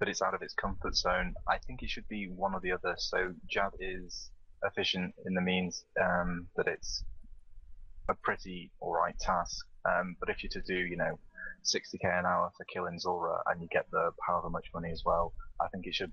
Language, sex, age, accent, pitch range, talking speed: English, male, 20-39, British, 85-95 Hz, 215 wpm